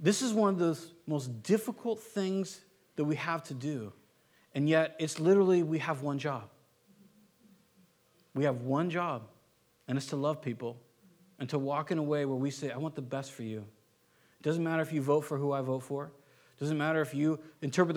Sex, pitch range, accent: male, 115-155 Hz, American